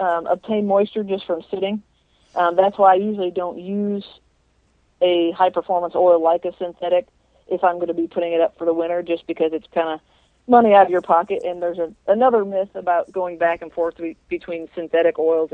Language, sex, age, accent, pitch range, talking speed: English, female, 40-59, American, 165-190 Hz, 210 wpm